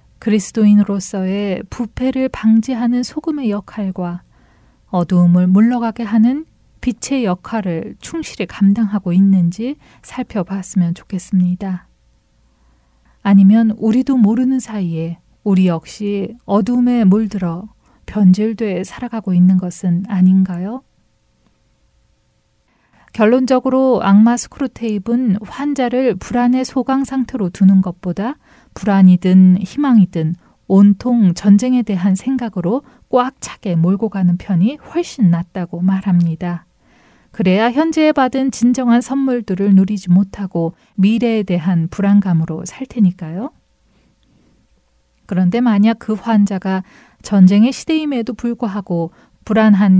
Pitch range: 185-240 Hz